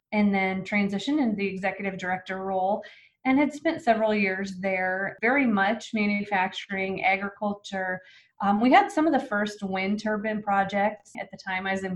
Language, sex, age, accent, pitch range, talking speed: English, female, 20-39, American, 195-240 Hz, 170 wpm